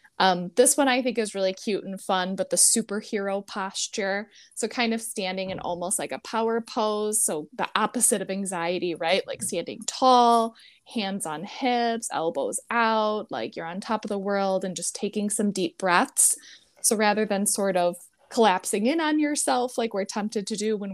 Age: 20-39